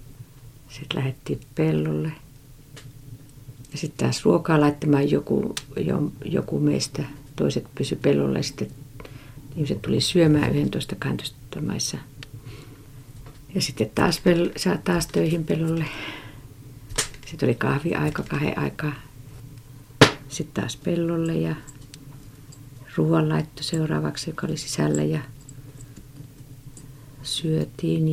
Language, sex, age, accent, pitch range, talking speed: Finnish, female, 50-69, native, 125-155 Hz, 90 wpm